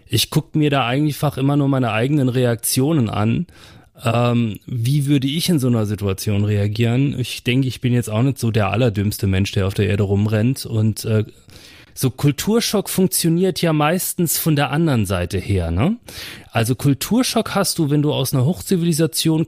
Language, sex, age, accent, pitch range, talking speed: German, male, 30-49, German, 110-145 Hz, 180 wpm